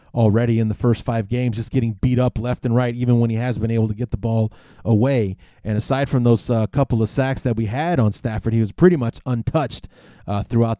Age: 30-49